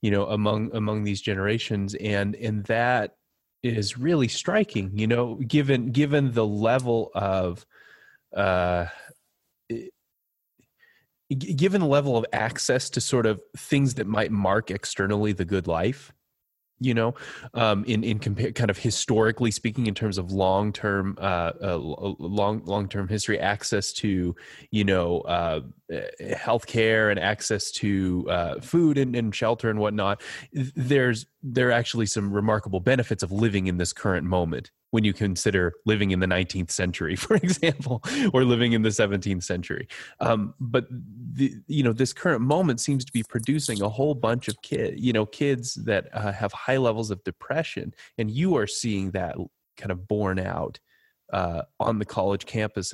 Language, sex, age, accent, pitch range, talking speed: English, male, 20-39, American, 100-125 Hz, 160 wpm